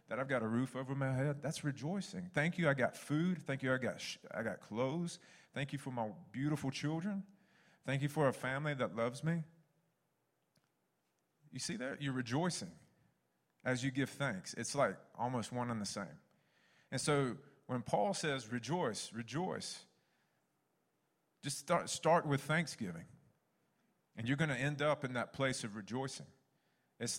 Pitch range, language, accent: 130-155 Hz, English, American